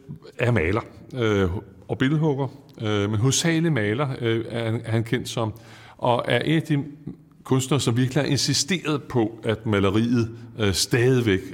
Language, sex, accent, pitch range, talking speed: Danish, male, native, 100-130 Hz, 135 wpm